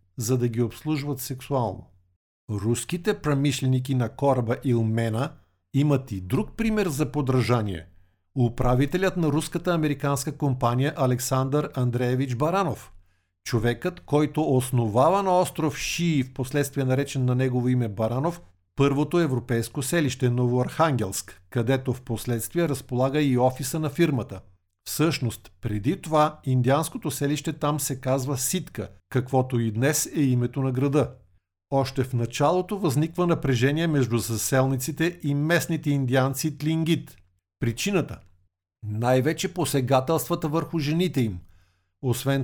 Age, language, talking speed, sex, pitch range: 50-69, Bulgarian, 115 wpm, male, 120-155 Hz